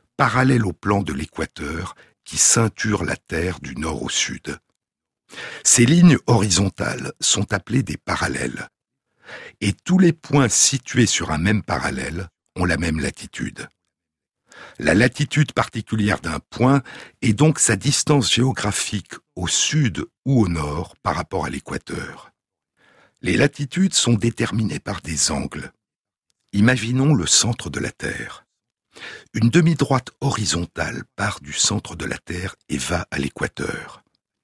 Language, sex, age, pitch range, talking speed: French, male, 60-79, 90-130 Hz, 135 wpm